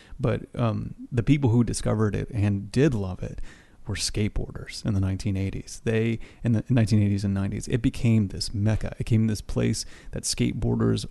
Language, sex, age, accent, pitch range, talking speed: English, male, 30-49, American, 105-125 Hz, 175 wpm